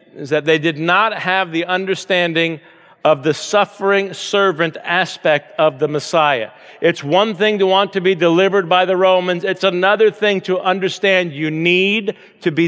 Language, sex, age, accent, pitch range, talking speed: English, male, 50-69, American, 165-200 Hz, 170 wpm